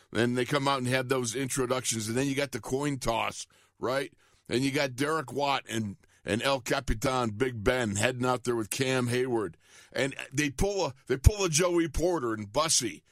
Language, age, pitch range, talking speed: English, 50-69, 120-145 Hz, 200 wpm